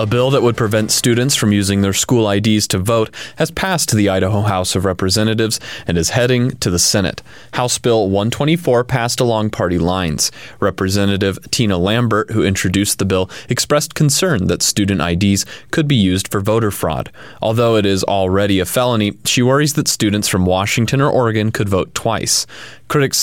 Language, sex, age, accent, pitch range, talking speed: English, male, 30-49, American, 95-115 Hz, 180 wpm